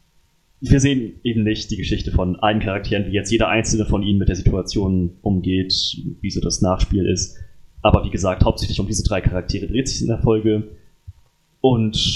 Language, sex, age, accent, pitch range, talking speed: German, male, 20-39, German, 90-115 Hz, 190 wpm